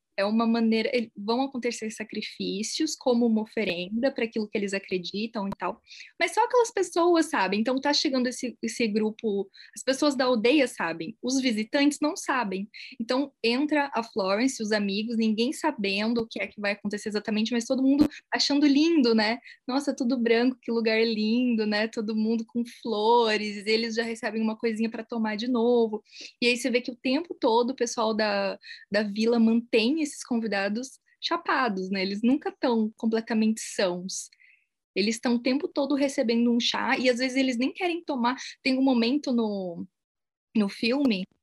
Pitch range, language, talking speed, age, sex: 210-260 Hz, Portuguese, 175 wpm, 10-29, female